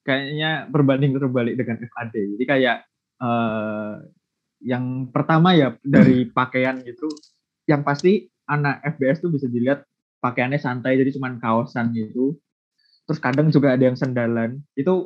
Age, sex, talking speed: 20-39, male, 135 wpm